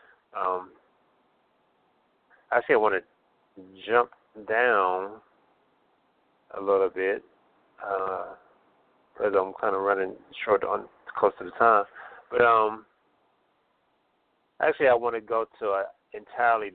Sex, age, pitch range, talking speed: male, 30-49, 100-120 Hz, 115 wpm